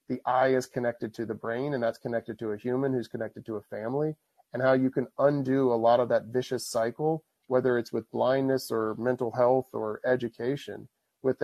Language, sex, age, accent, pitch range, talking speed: English, male, 40-59, American, 115-130 Hz, 205 wpm